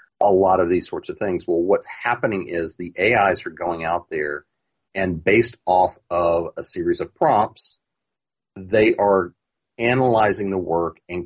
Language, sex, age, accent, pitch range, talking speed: English, male, 40-59, American, 85-115 Hz, 165 wpm